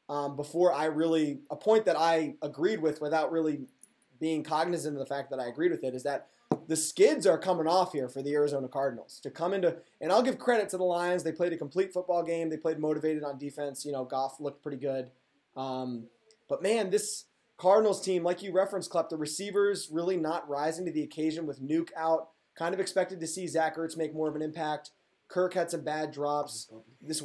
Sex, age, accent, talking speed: male, 20-39, American, 220 wpm